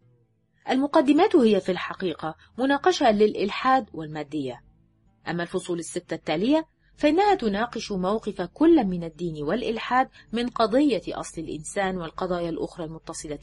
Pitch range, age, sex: 145-235 Hz, 30-49, female